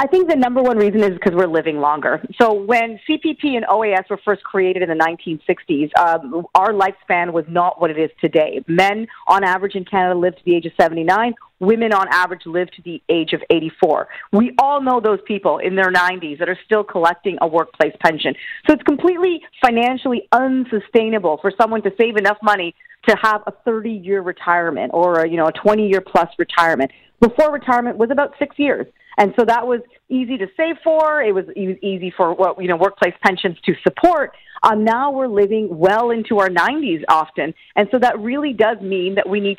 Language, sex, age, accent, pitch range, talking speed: English, female, 40-59, American, 185-250 Hz, 200 wpm